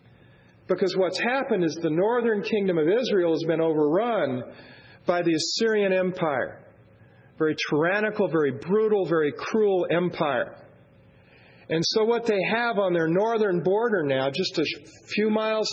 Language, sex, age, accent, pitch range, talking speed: English, male, 40-59, American, 160-210 Hz, 140 wpm